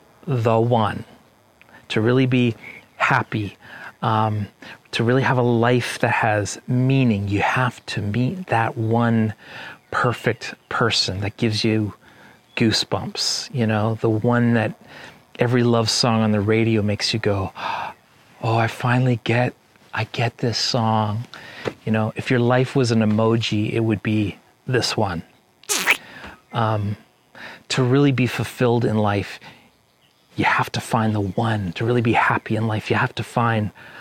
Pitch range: 110-125 Hz